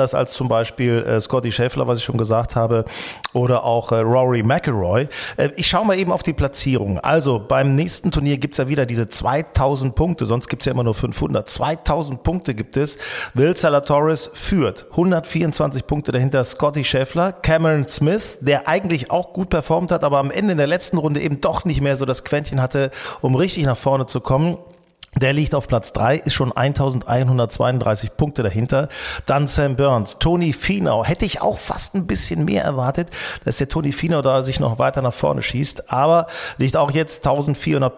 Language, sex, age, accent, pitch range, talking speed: German, male, 40-59, German, 125-155 Hz, 195 wpm